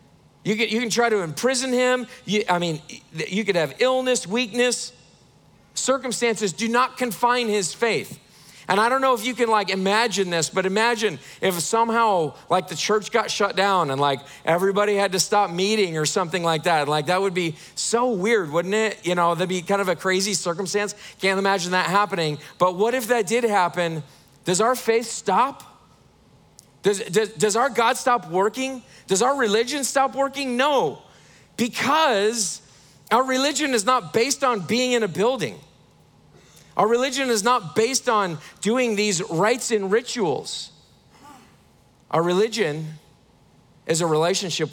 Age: 40-59